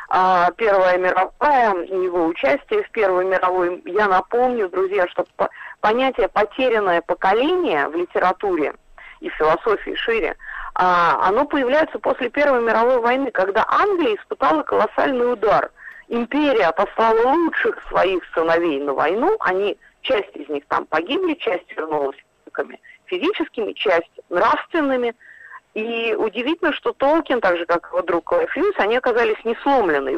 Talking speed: 125 wpm